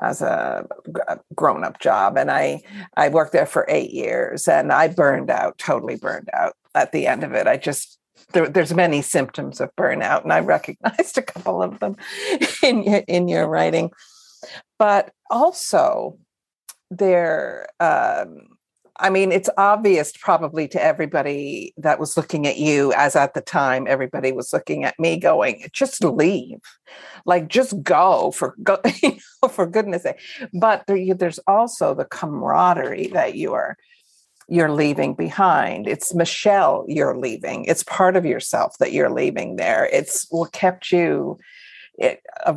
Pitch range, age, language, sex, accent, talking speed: 165-230 Hz, 50-69, English, female, American, 160 wpm